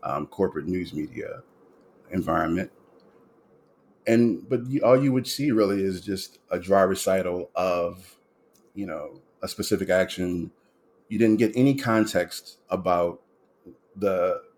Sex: male